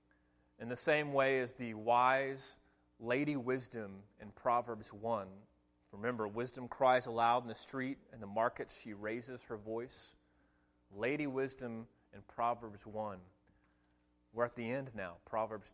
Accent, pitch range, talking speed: American, 90-135 Hz, 140 wpm